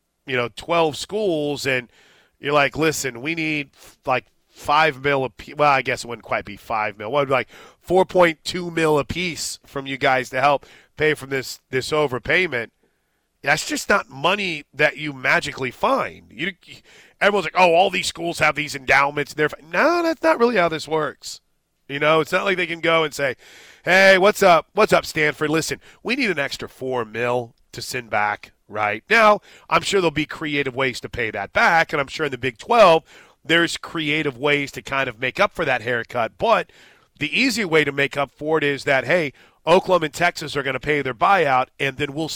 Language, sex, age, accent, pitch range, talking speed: English, male, 30-49, American, 130-165 Hz, 210 wpm